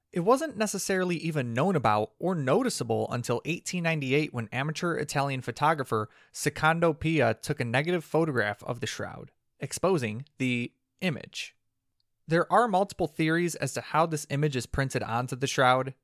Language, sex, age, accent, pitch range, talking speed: English, male, 30-49, American, 120-160 Hz, 150 wpm